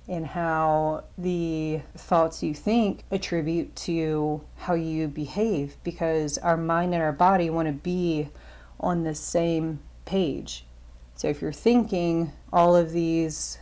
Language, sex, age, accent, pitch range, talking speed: English, female, 30-49, American, 155-175 Hz, 135 wpm